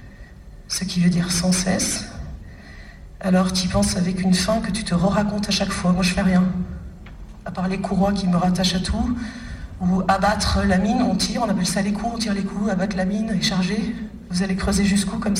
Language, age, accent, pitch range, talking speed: French, 40-59, French, 180-210 Hz, 225 wpm